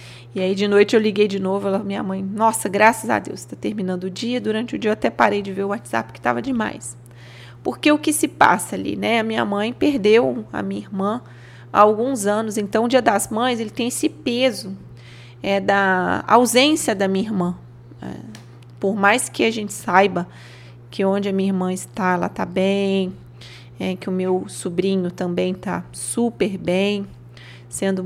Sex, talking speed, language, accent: female, 185 wpm, Portuguese, Brazilian